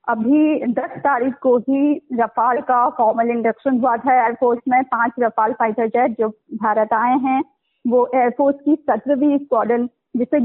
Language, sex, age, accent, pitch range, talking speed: Hindi, female, 20-39, native, 240-290 Hz, 155 wpm